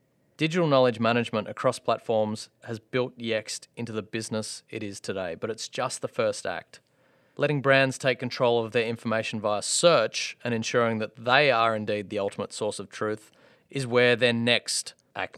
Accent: Australian